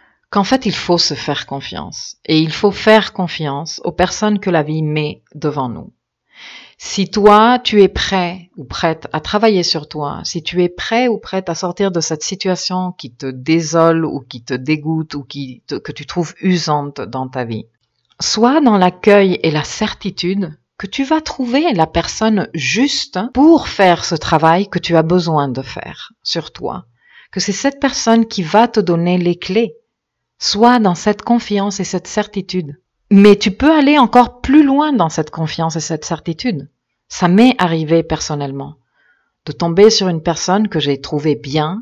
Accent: French